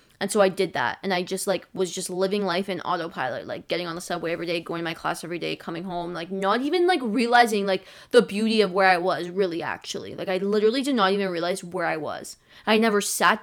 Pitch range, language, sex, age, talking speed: 190-225 Hz, English, female, 20-39, 255 wpm